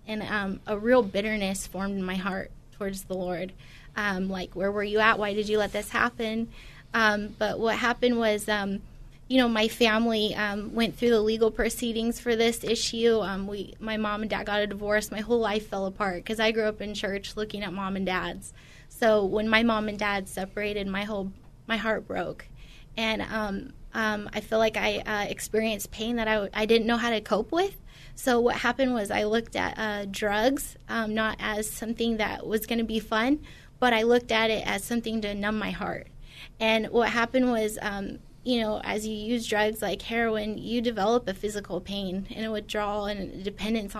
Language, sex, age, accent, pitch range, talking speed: English, female, 20-39, American, 205-230 Hz, 210 wpm